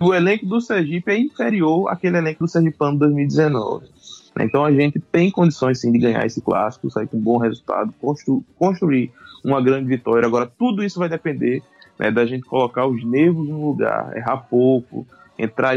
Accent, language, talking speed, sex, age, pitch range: Brazilian, Portuguese, 180 wpm, male, 20-39, 115-140 Hz